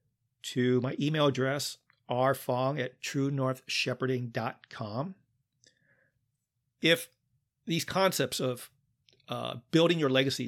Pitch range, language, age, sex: 125-140 Hz, English, 40-59, male